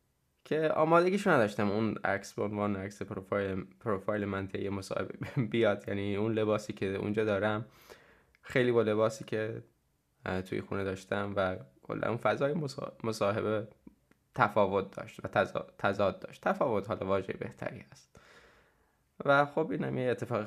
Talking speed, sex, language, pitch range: 135 wpm, male, Persian, 100-130 Hz